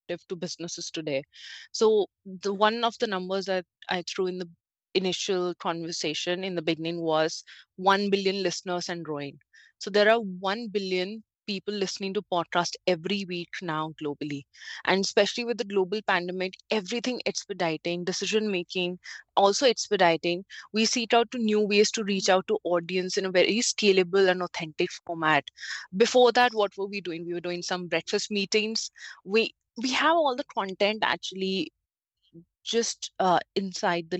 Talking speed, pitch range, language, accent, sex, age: 160 wpm, 170-210 Hz, English, Indian, female, 20-39